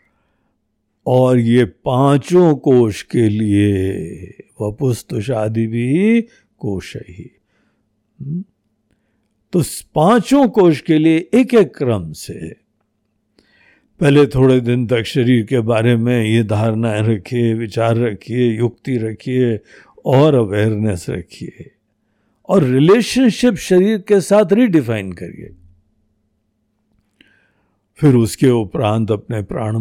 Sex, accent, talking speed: male, native, 105 wpm